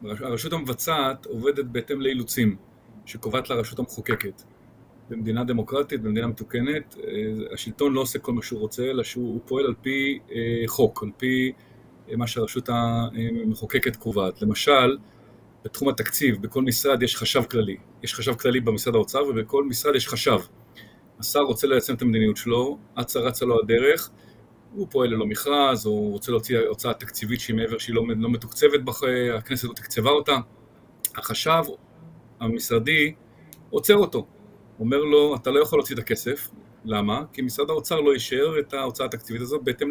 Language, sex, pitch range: Hebrew, male, 115-145 Hz